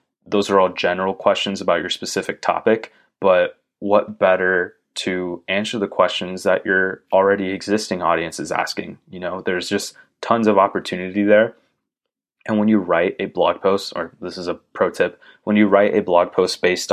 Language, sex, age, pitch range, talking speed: English, male, 20-39, 90-105 Hz, 180 wpm